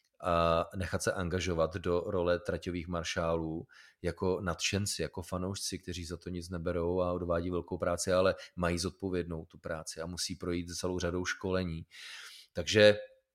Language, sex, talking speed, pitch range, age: Czech, male, 150 wpm, 90-105 Hz, 30-49